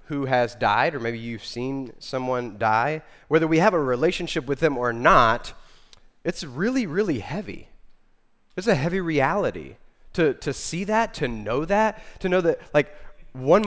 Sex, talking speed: male, 165 wpm